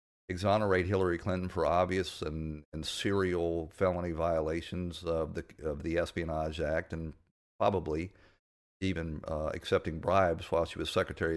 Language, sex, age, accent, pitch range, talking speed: English, male, 50-69, American, 80-95 Hz, 135 wpm